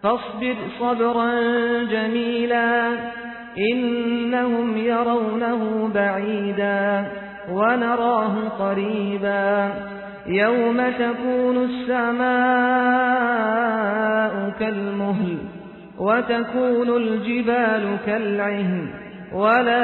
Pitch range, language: 205-235 Hz, Filipino